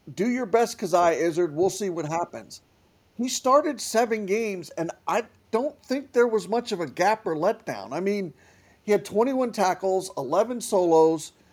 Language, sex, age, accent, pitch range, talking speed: English, male, 50-69, American, 165-215 Hz, 170 wpm